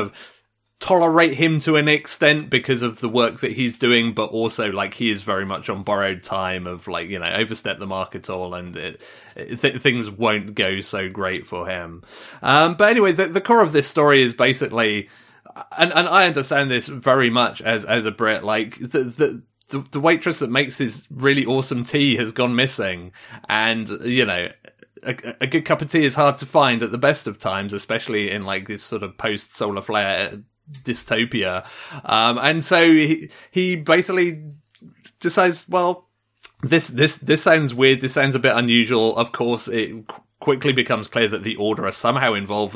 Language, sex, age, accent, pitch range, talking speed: English, male, 30-49, British, 110-145 Hz, 195 wpm